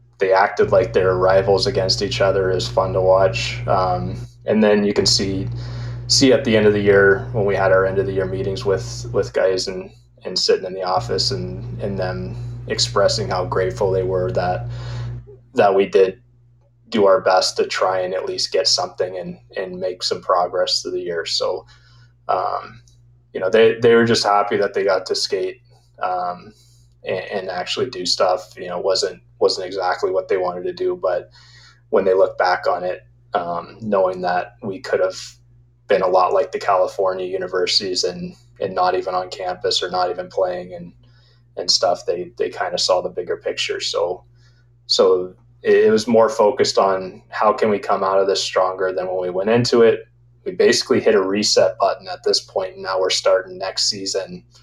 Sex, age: male, 20-39